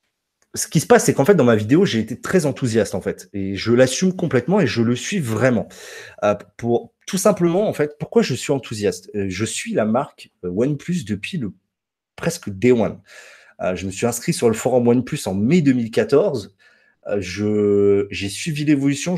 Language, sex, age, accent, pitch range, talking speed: French, male, 30-49, French, 115-175 Hz, 195 wpm